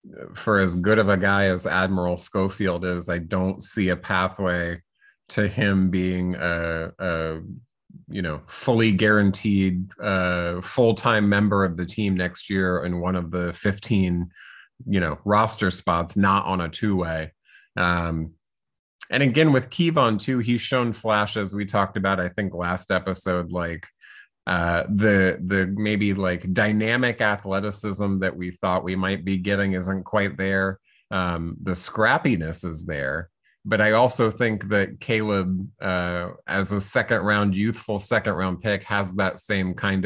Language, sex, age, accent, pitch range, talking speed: English, male, 30-49, American, 90-105 Hz, 155 wpm